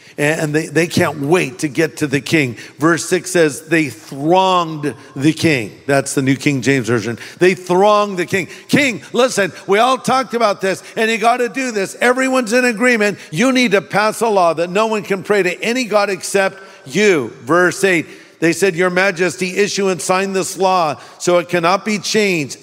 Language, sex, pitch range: English, male, 155-205 Hz